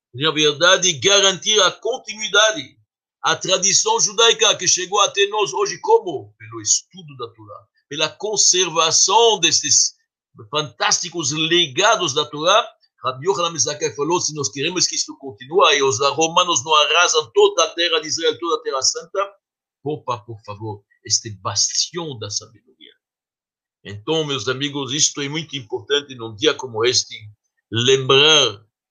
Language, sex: Portuguese, male